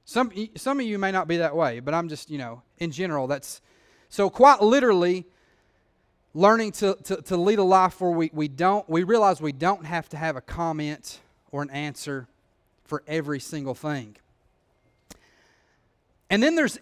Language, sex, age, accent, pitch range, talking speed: English, male, 30-49, American, 145-200 Hz, 180 wpm